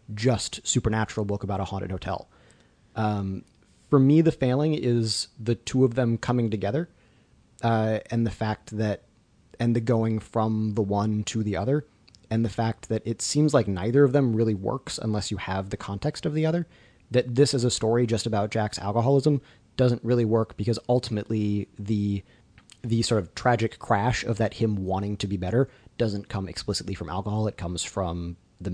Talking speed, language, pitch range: 185 wpm, English, 100-125 Hz